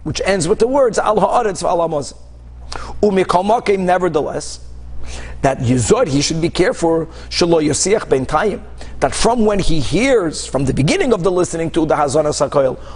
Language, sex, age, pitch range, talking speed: English, male, 50-69, 140-195 Hz, 160 wpm